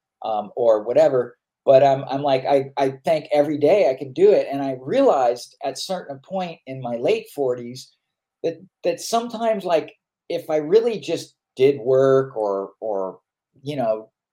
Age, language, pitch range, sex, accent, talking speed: 40-59, English, 125-170 Hz, male, American, 170 wpm